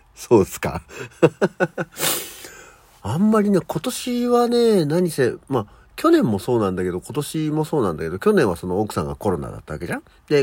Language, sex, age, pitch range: Japanese, male, 50-69, 90-140 Hz